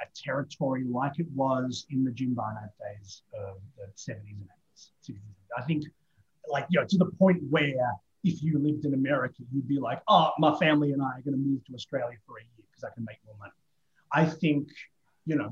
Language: English